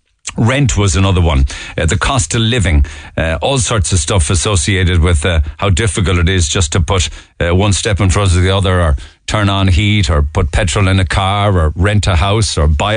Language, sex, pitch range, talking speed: English, male, 90-105 Hz, 220 wpm